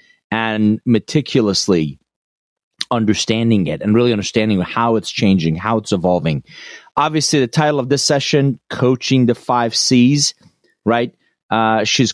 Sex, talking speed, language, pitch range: male, 130 wpm, English, 110-155 Hz